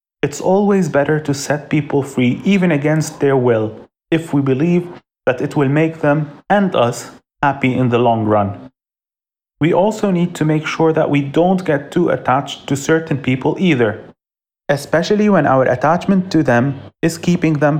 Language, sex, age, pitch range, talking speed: English, male, 30-49, 130-170 Hz, 170 wpm